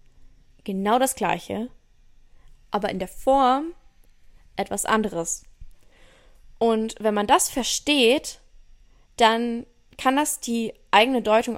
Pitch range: 210-250 Hz